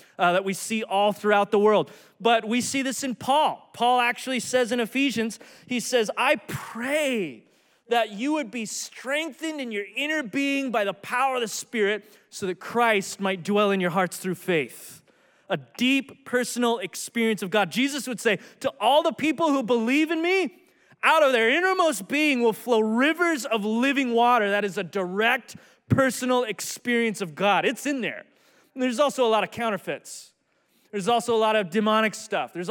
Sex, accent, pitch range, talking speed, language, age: male, American, 205-255 Hz, 185 wpm, English, 20-39